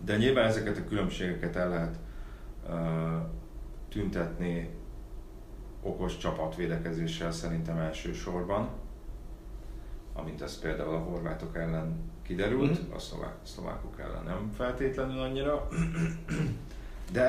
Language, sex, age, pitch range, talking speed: Hungarian, male, 30-49, 85-110 Hz, 100 wpm